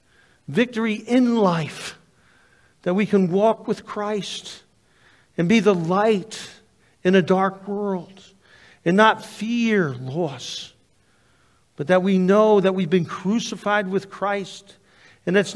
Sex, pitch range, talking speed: male, 170-215 Hz, 125 wpm